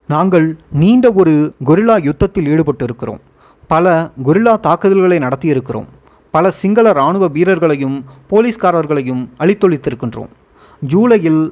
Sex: male